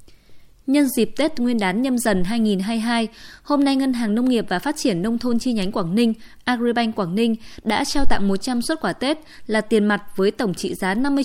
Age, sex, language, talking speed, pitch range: 20-39, female, Vietnamese, 220 wpm, 195-255 Hz